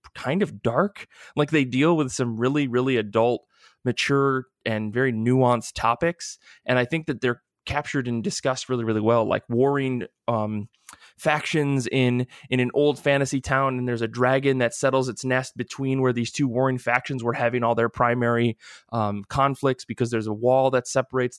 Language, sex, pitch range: English, male, 115-140 Hz